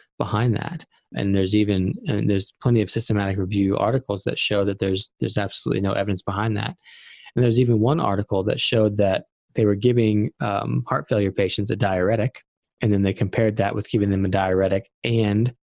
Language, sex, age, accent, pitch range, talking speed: English, male, 20-39, American, 95-115 Hz, 190 wpm